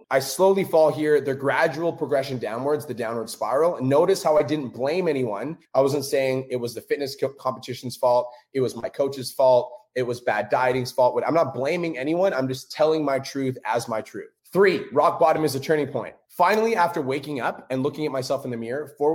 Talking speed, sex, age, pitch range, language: 215 wpm, male, 20-39, 125-160 Hz, English